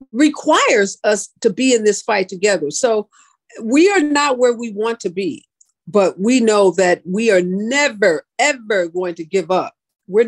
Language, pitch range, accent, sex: English, 200-290 Hz, American, female